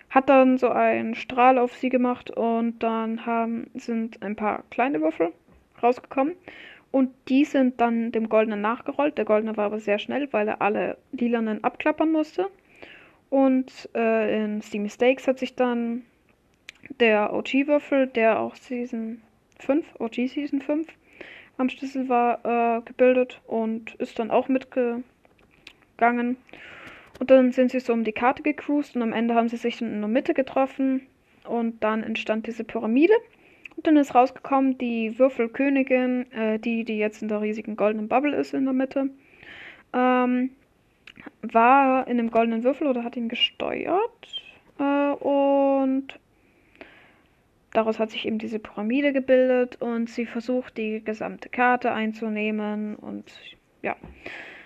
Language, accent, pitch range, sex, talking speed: German, German, 225-270 Hz, female, 145 wpm